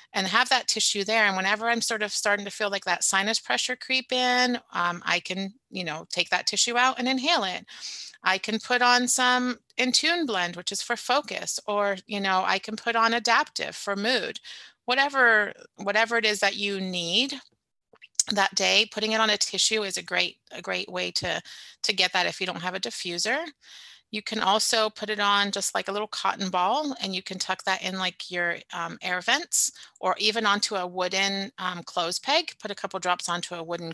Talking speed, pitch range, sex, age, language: 210 wpm, 180-225 Hz, female, 30-49, English